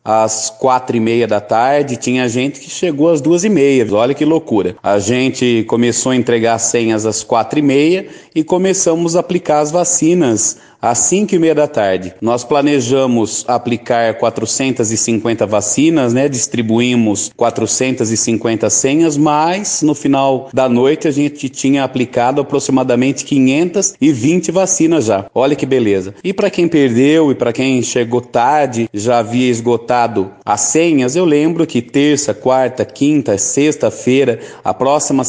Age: 30-49